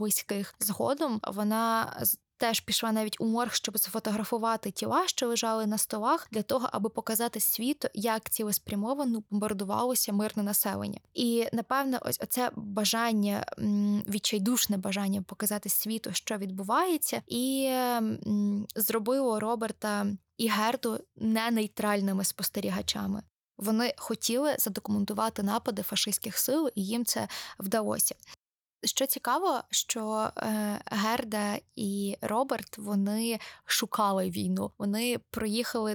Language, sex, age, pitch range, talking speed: Ukrainian, female, 20-39, 210-235 Hz, 110 wpm